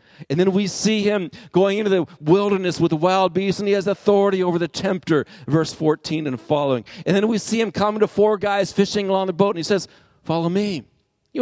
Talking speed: 225 wpm